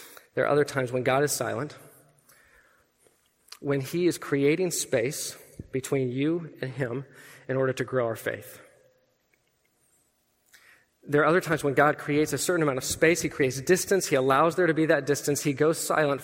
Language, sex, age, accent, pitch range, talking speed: English, male, 20-39, American, 140-175 Hz, 175 wpm